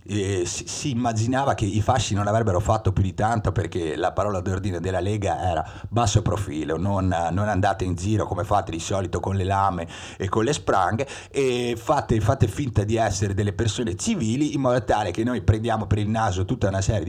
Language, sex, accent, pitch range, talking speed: Italian, male, native, 95-115 Hz, 205 wpm